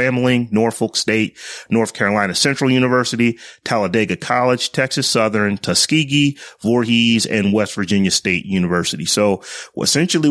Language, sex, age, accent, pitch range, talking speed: English, male, 30-49, American, 100-120 Hz, 115 wpm